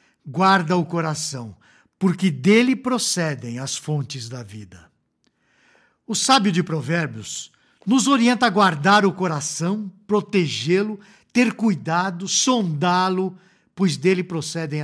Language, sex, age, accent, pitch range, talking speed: Portuguese, male, 60-79, Brazilian, 150-210 Hz, 110 wpm